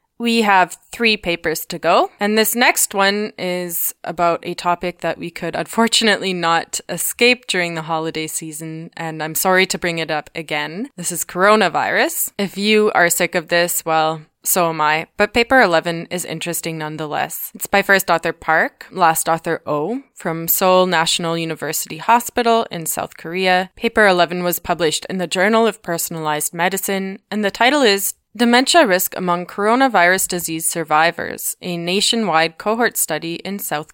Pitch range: 165-205 Hz